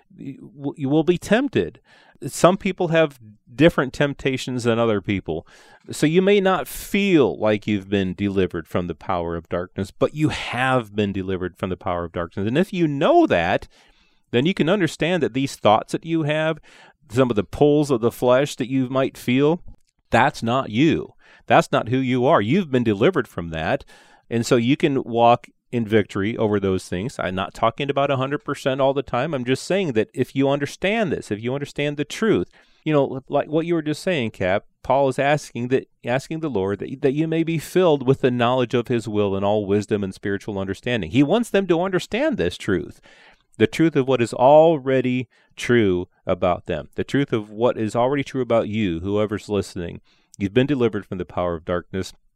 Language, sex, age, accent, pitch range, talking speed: English, male, 30-49, American, 105-145 Hz, 200 wpm